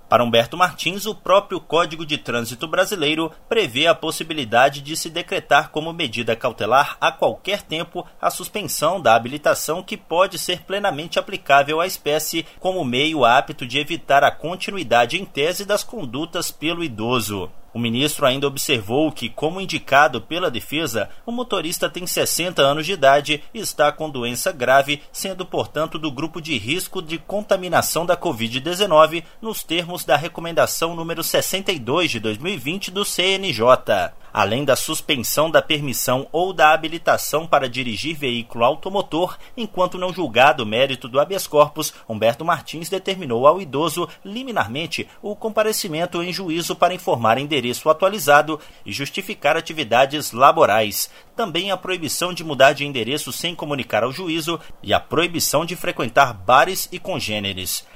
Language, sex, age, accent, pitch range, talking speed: Portuguese, male, 30-49, Brazilian, 140-180 Hz, 150 wpm